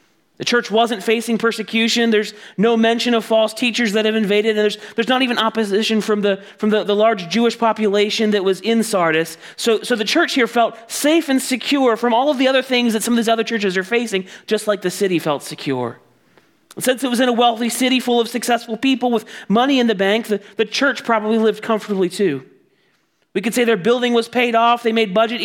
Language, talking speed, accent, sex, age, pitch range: English, 225 wpm, American, male, 30-49, 205-245 Hz